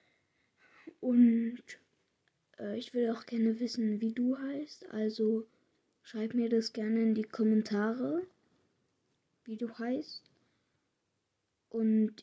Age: 20-39